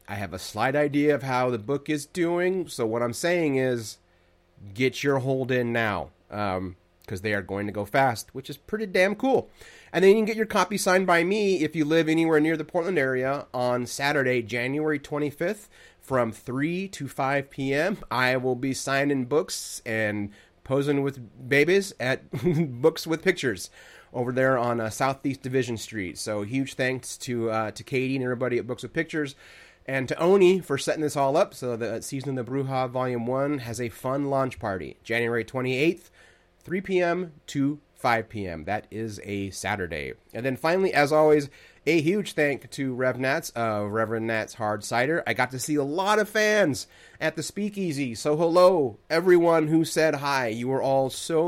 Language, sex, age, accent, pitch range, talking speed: English, male, 30-49, American, 115-155 Hz, 185 wpm